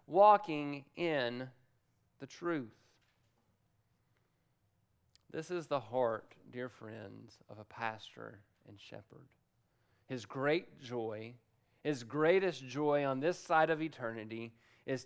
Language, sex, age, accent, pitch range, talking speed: English, male, 40-59, American, 125-165 Hz, 110 wpm